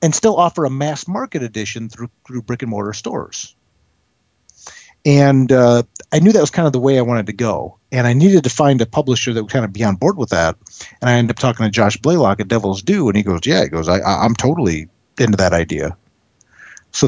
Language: English